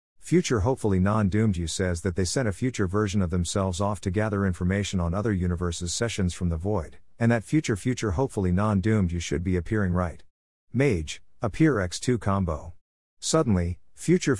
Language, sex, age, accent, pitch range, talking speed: English, male, 50-69, American, 90-115 Hz, 170 wpm